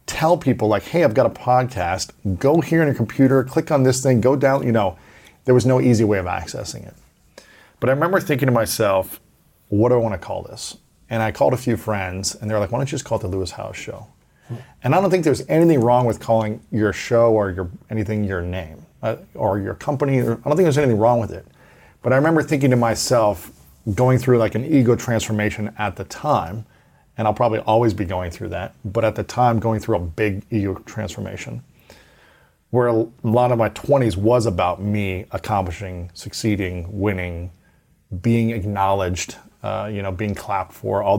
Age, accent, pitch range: 40-59, American, 95-125 Hz